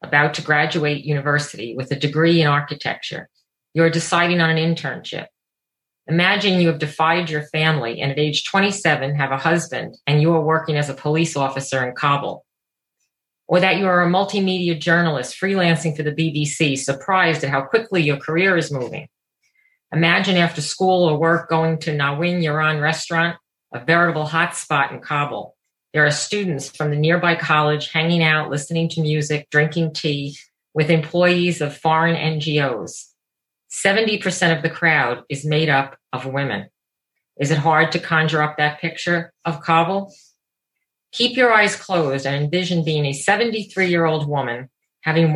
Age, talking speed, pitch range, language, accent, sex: 40-59, 160 wpm, 145-170 Hz, English, American, female